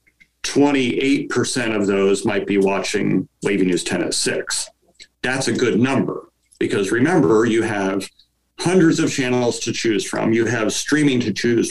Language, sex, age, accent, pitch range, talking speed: English, male, 40-59, American, 100-130 Hz, 150 wpm